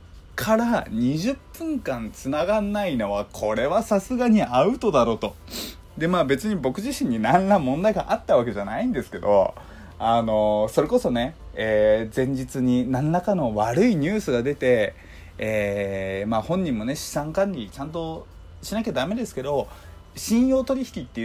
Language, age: Japanese, 20-39